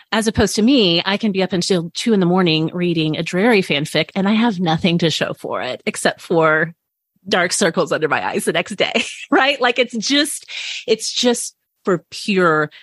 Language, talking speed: English, 200 wpm